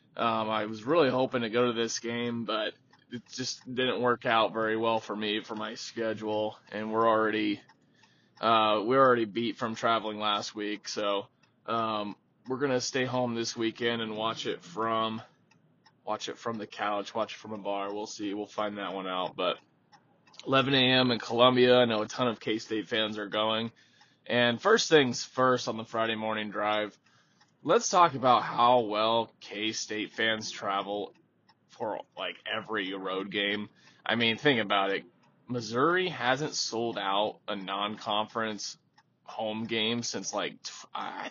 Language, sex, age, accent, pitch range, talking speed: English, male, 20-39, American, 105-125 Hz, 170 wpm